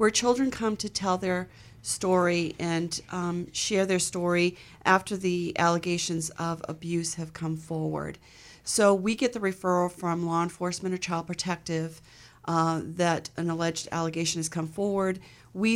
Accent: American